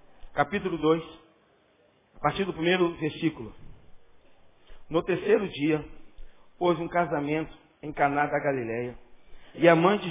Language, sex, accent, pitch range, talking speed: Portuguese, male, Brazilian, 140-175 Hz, 120 wpm